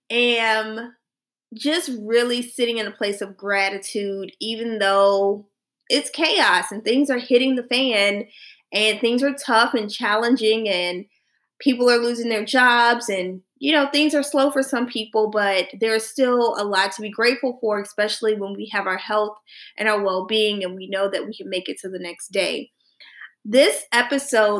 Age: 20-39